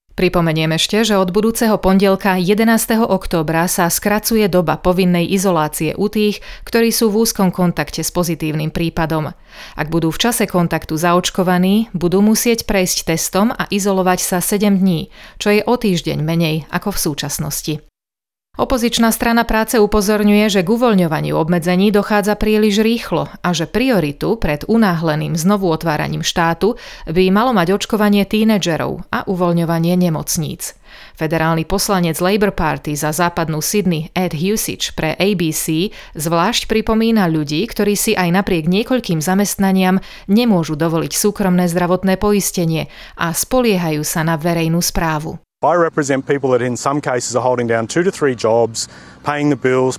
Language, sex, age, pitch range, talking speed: Slovak, female, 30-49, 140-195 Hz, 145 wpm